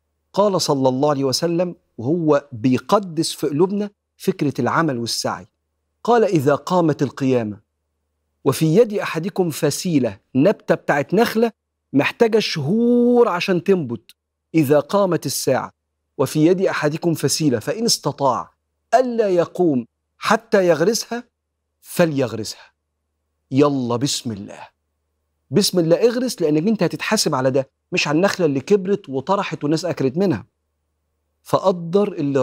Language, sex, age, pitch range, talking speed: Arabic, male, 50-69, 110-175 Hz, 115 wpm